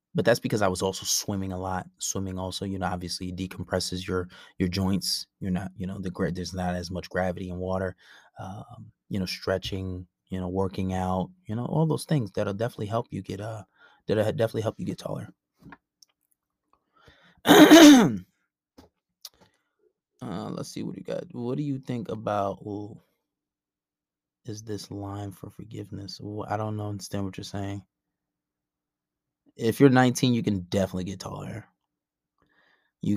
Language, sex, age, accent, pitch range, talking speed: English, male, 20-39, American, 90-110 Hz, 165 wpm